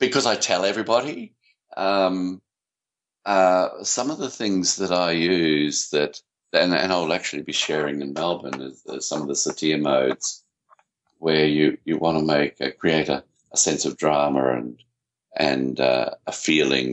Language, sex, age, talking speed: English, male, 50-69, 165 wpm